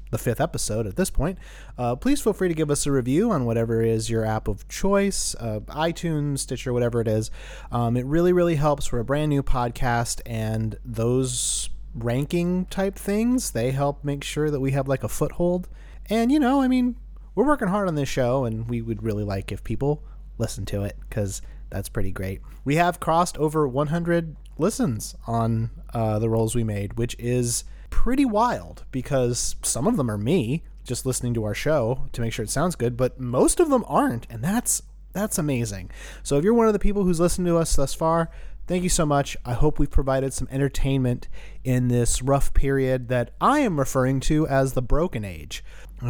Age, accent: 30-49, American